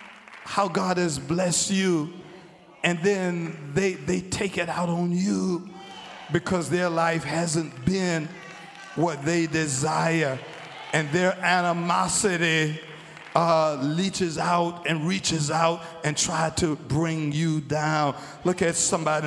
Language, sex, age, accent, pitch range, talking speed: English, male, 50-69, American, 165-225 Hz, 125 wpm